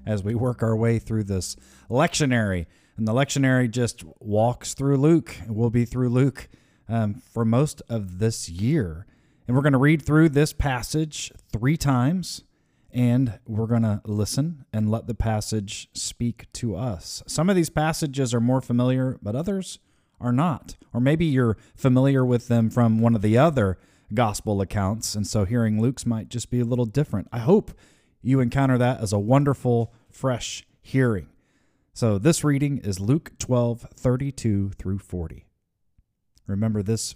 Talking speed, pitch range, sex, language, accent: 170 wpm, 105-135 Hz, male, English, American